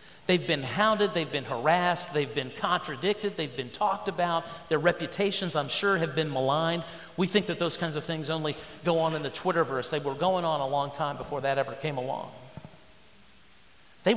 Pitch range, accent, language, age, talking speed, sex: 145-195 Hz, American, English, 40-59, 195 wpm, male